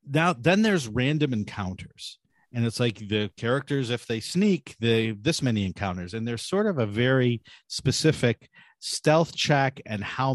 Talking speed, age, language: 160 wpm, 50-69, English